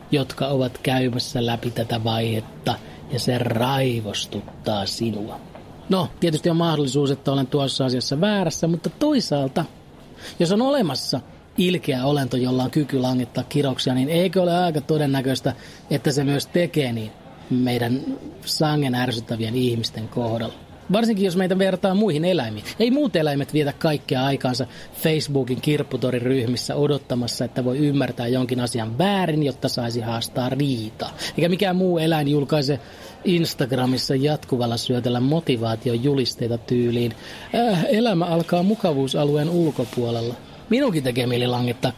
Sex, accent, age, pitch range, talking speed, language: male, native, 30-49, 125-170 Hz, 130 wpm, Finnish